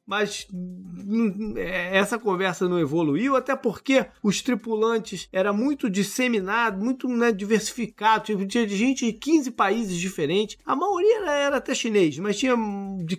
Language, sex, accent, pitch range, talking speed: Portuguese, male, Brazilian, 160-230 Hz, 130 wpm